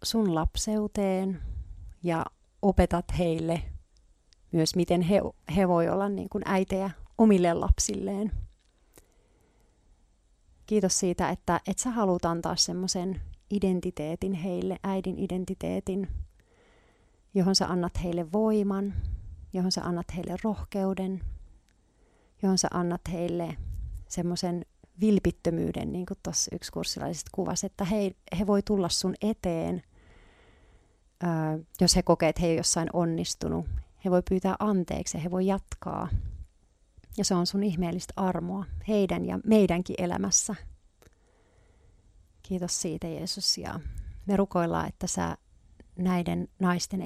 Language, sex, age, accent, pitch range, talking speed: Finnish, female, 40-59, native, 165-195 Hz, 115 wpm